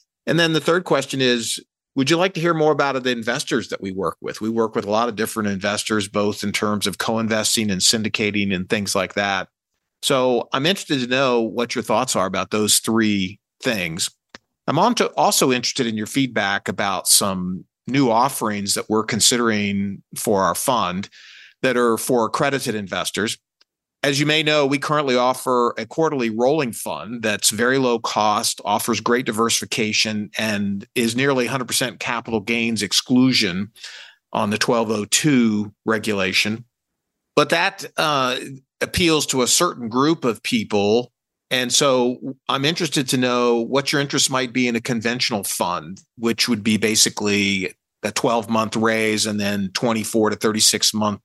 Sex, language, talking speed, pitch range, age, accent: male, English, 160 wpm, 105-130 Hz, 50-69, American